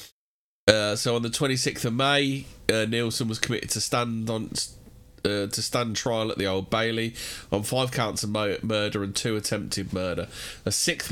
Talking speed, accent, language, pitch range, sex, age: 180 wpm, British, English, 110-125 Hz, male, 20-39